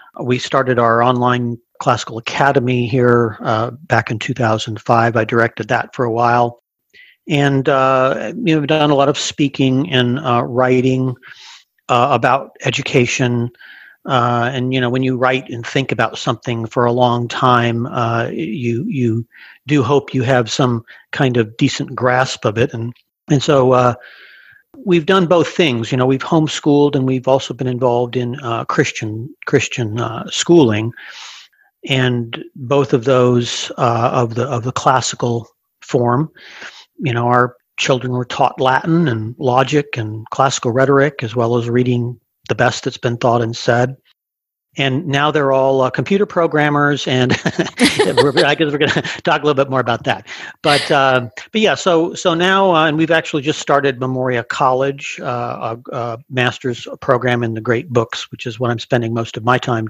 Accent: American